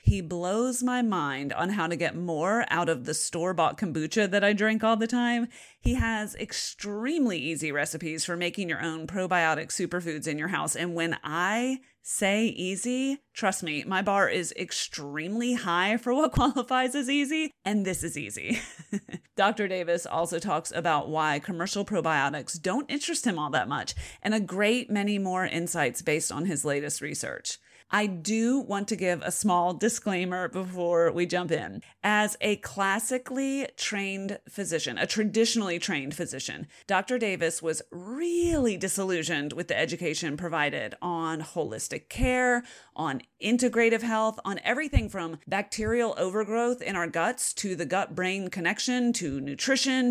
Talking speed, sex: 155 wpm, female